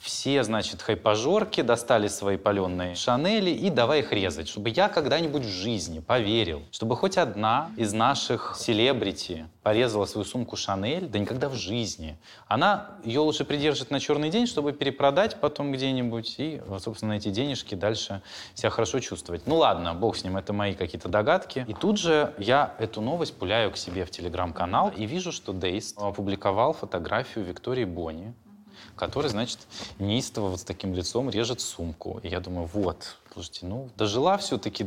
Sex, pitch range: male, 95-130 Hz